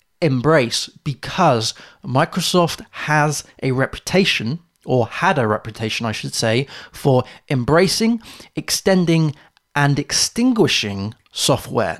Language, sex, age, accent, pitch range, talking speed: English, male, 30-49, British, 125-160 Hz, 95 wpm